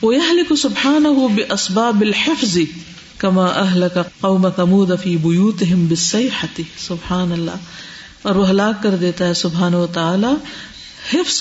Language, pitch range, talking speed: Urdu, 185-260 Hz, 80 wpm